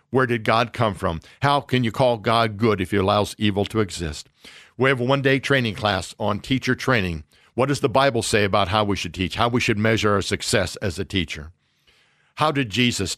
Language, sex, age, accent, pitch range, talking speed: English, male, 60-79, American, 100-125 Hz, 220 wpm